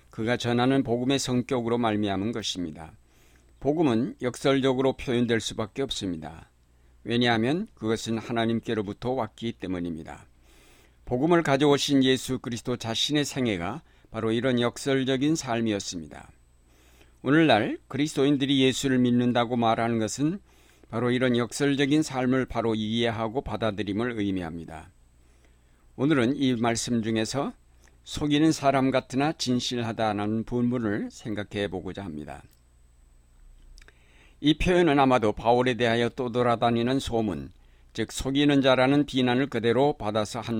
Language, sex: Korean, male